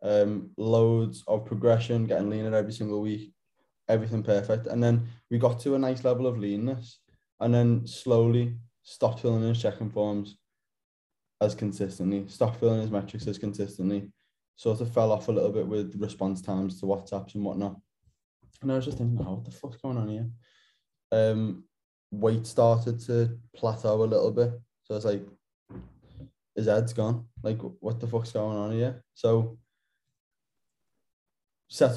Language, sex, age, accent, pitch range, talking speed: English, male, 20-39, British, 110-120 Hz, 165 wpm